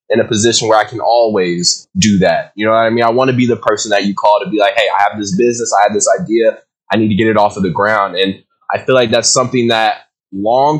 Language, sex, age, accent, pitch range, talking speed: English, male, 20-39, American, 110-135 Hz, 290 wpm